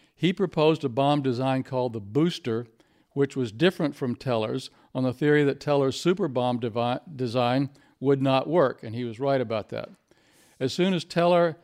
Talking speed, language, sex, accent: 175 wpm, English, male, American